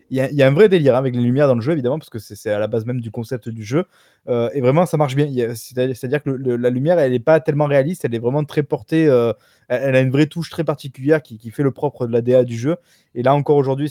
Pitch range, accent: 120-140 Hz, French